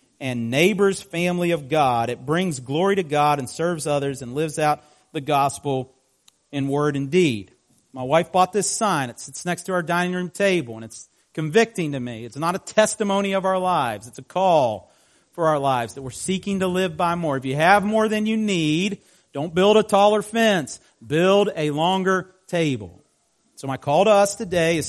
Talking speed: 200 wpm